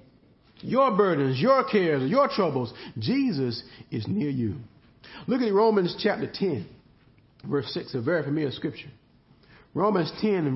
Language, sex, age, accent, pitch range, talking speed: English, male, 40-59, American, 140-205 Hz, 135 wpm